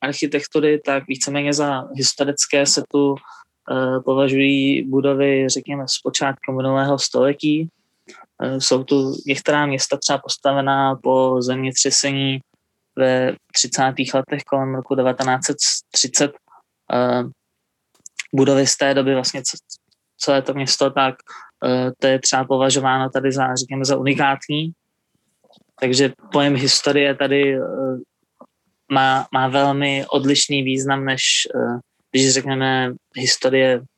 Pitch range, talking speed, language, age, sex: 130-145 Hz, 110 wpm, Czech, 20-39, male